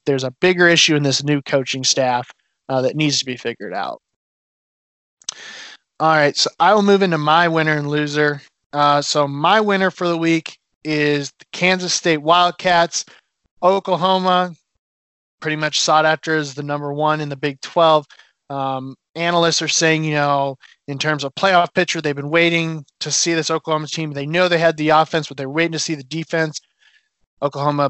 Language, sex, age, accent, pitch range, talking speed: English, male, 20-39, American, 145-175 Hz, 185 wpm